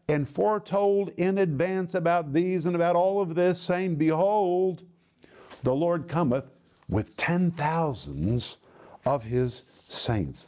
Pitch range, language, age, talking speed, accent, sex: 135-180 Hz, English, 50-69, 120 wpm, American, male